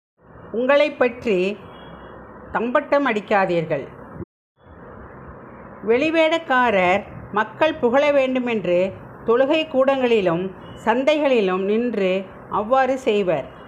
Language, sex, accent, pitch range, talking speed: Tamil, female, native, 210-280 Hz, 55 wpm